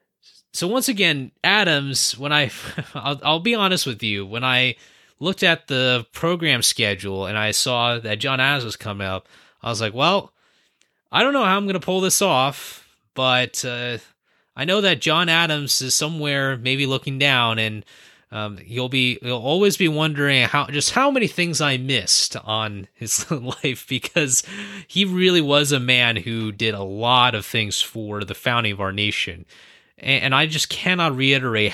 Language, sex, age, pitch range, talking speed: English, male, 20-39, 110-150 Hz, 185 wpm